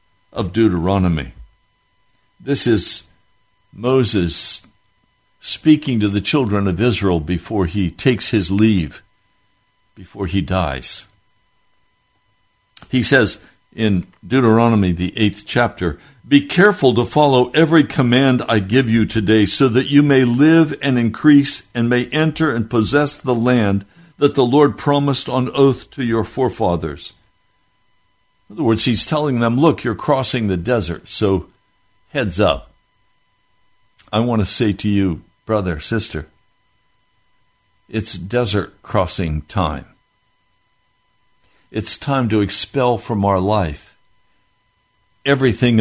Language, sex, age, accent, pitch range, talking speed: English, male, 60-79, American, 100-125 Hz, 120 wpm